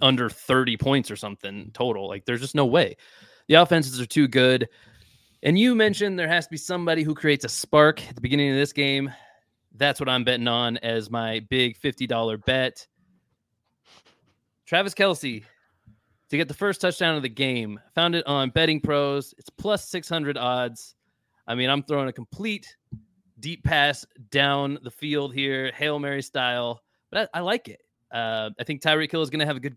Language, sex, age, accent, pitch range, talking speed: English, male, 20-39, American, 120-155 Hz, 190 wpm